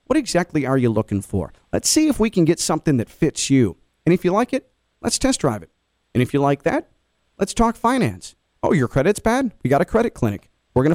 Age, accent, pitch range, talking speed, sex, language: 40-59, American, 130-175 Hz, 240 wpm, male, English